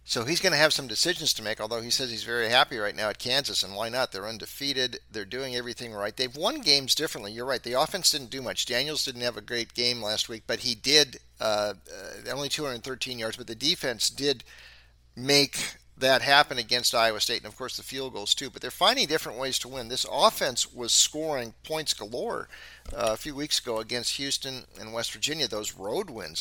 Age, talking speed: 50-69, 225 wpm